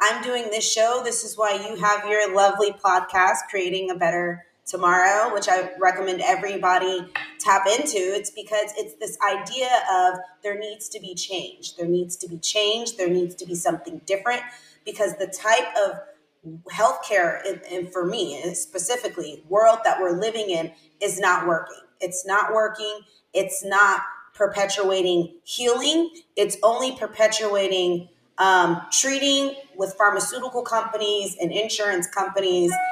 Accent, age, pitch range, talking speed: American, 20-39, 180-220 Hz, 150 wpm